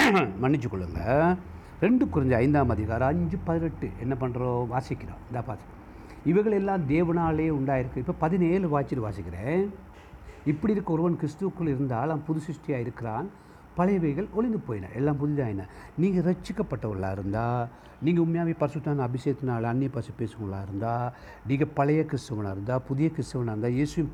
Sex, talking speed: male, 125 wpm